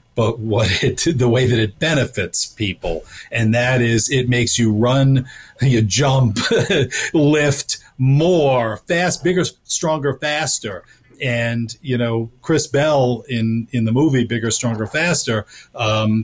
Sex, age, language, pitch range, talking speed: male, 50-69, English, 110-135 Hz, 135 wpm